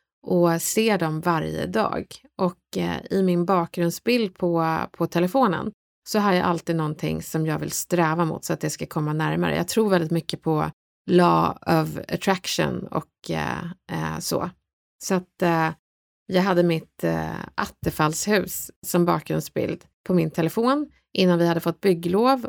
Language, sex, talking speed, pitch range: Swedish, female, 155 wpm, 170-210 Hz